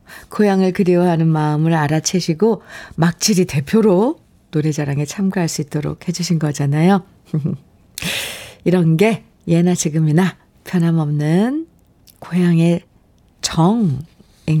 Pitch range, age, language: 160-225 Hz, 50-69, Korean